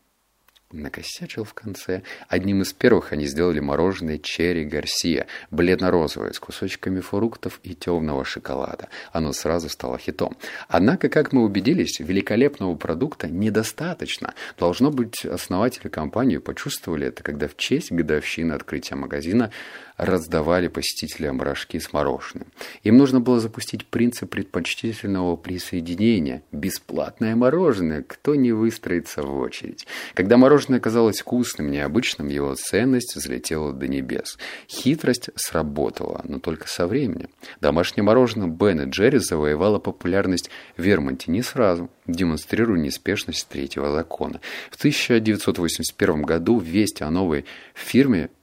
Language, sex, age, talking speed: Russian, male, 30-49, 120 wpm